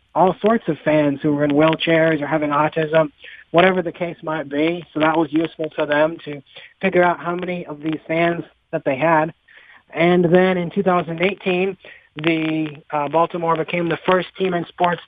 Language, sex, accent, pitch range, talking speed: English, male, American, 155-180 Hz, 185 wpm